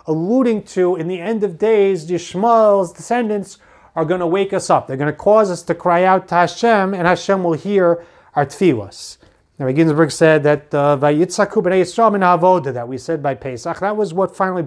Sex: male